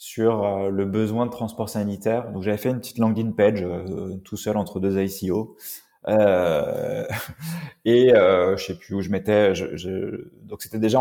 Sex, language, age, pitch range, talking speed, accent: male, French, 20-39, 100-125 Hz, 180 wpm, French